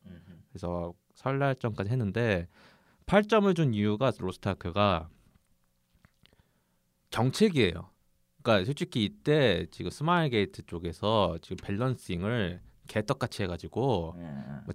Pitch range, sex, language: 90-130 Hz, male, Korean